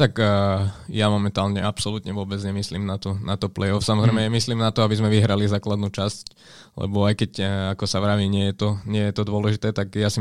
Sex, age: male, 20-39